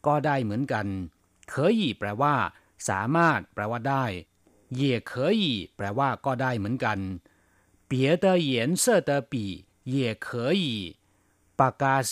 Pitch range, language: 100-140 Hz, Thai